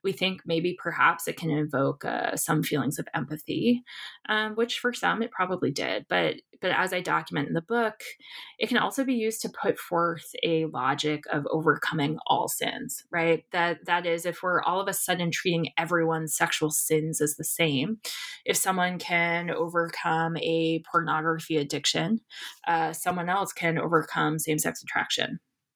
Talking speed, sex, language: 170 wpm, female, English